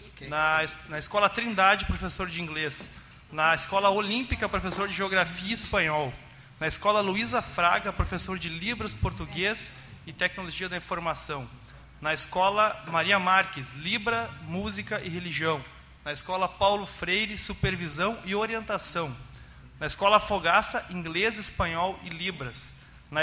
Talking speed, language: 130 wpm, Portuguese